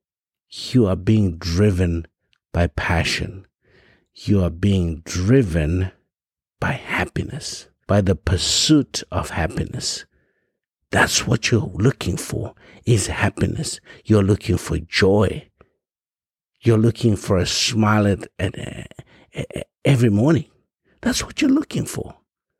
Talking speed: 115 wpm